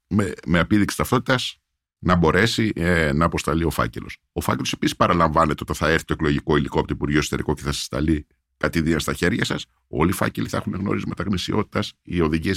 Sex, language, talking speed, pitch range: male, Greek, 195 wpm, 75-110 Hz